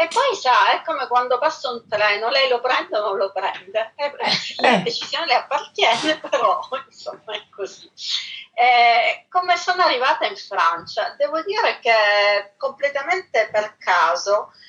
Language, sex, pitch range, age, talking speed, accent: Italian, female, 185-295 Hz, 40-59, 150 wpm, native